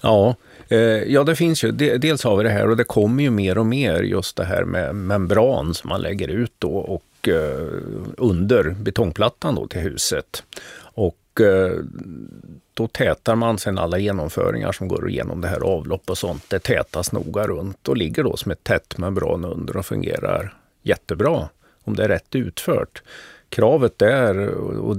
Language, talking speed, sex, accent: Swedish, 170 wpm, male, native